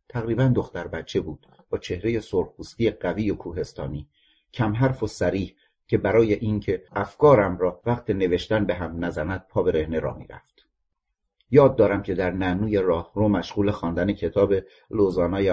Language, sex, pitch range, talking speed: Persian, male, 90-110 Hz, 150 wpm